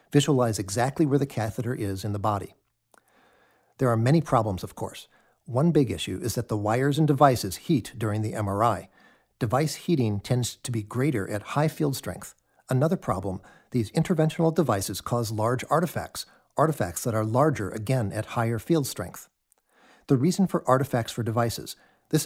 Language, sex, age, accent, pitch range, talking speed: English, male, 50-69, American, 105-145 Hz, 165 wpm